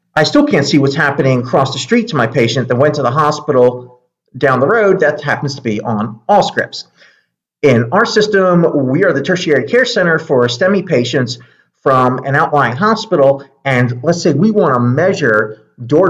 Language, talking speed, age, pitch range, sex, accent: English, 190 wpm, 40-59, 120-160 Hz, male, American